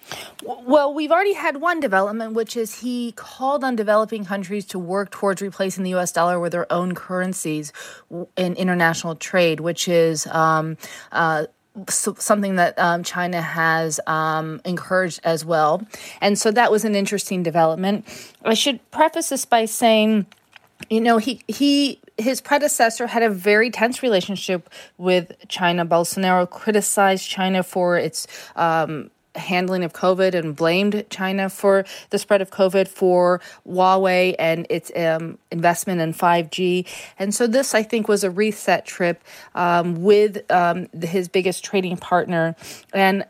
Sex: female